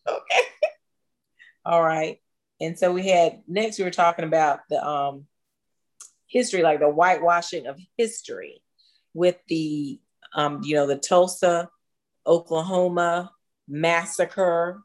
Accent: American